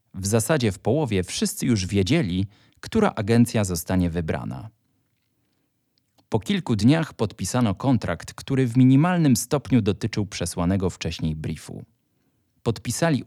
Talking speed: 115 wpm